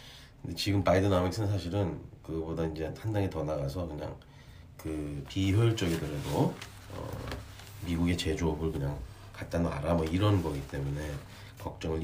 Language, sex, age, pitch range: Korean, male, 40-59, 85-115 Hz